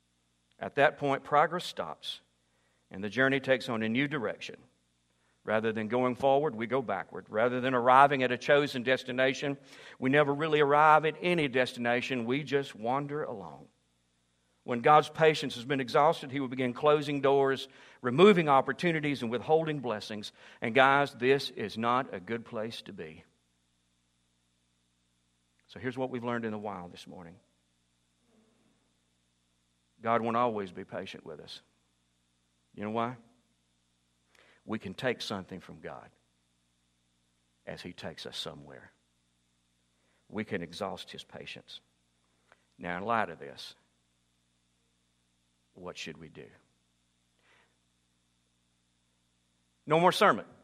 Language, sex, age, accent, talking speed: English, male, 50-69, American, 135 wpm